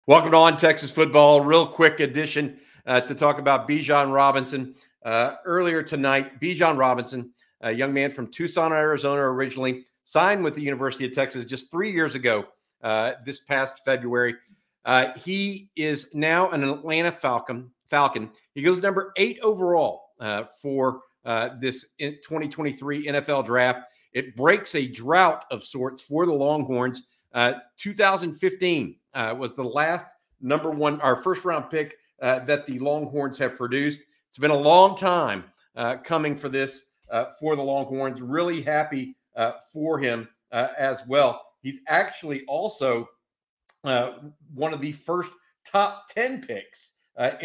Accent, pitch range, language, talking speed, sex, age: American, 130-160 Hz, English, 150 wpm, male, 50-69